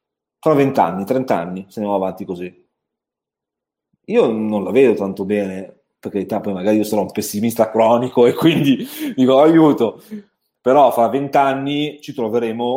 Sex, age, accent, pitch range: male, 30-49, native, 110-175 Hz